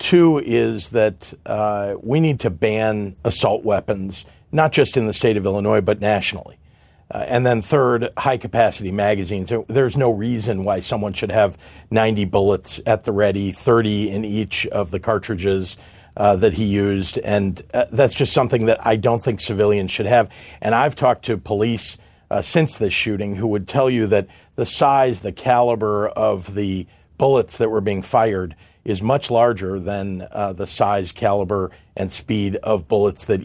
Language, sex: English, male